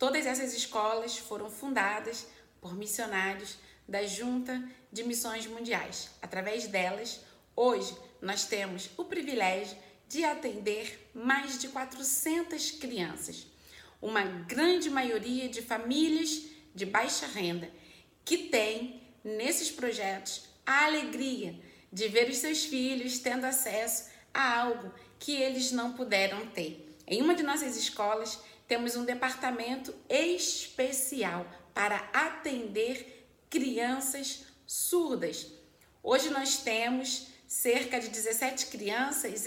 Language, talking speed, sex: Portuguese, 110 wpm, female